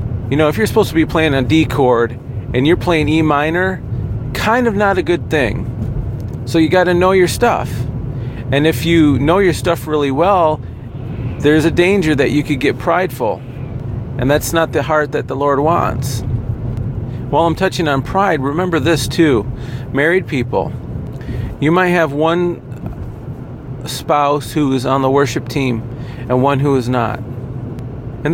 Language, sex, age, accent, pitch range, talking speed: English, male, 40-59, American, 125-165 Hz, 170 wpm